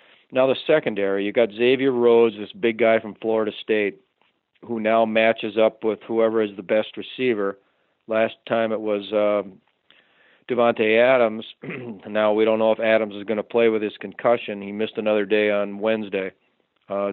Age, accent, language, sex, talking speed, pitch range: 40-59, American, English, male, 175 wpm, 105-120 Hz